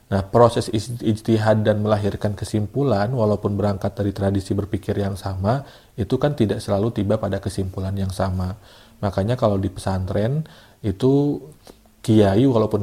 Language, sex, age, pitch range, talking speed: Indonesian, male, 40-59, 95-110 Hz, 135 wpm